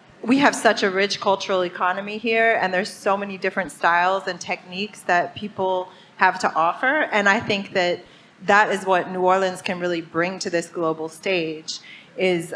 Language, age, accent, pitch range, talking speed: English, 30-49, American, 175-200 Hz, 180 wpm